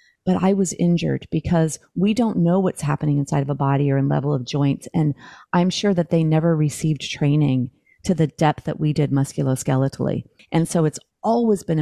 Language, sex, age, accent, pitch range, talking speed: English, female, 30-49, American, 140-175 Hz, 200 wpm